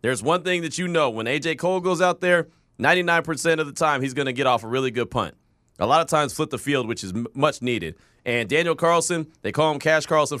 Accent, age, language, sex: American, 30-49, English, male